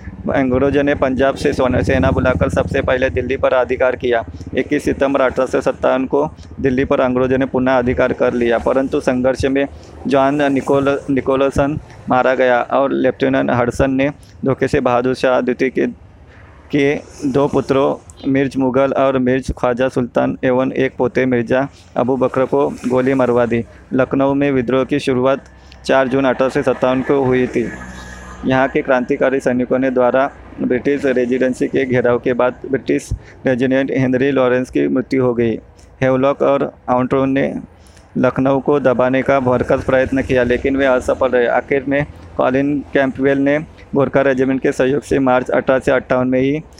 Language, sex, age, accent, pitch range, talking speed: Hindi, male, 20-39, native, 125-135 Hz, 155 wpm